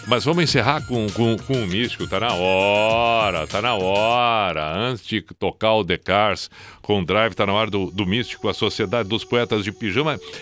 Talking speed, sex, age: 195 wpm, male, 60-79